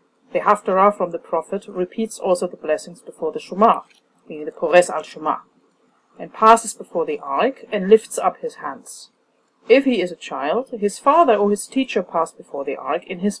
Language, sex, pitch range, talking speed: English, female, 190-245 Hz, 190 wpm